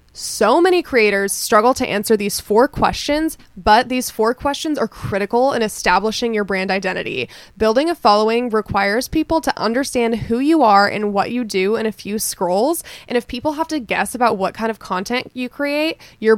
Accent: American